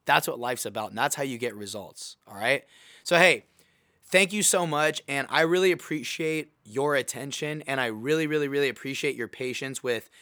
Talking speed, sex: 195 wpm, male